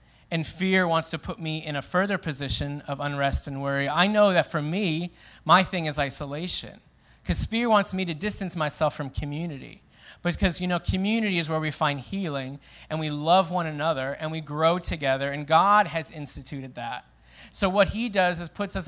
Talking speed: 195 wpm